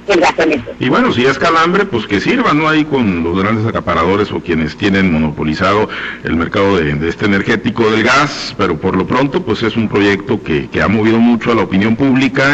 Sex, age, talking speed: male, 50-69, 205 wpm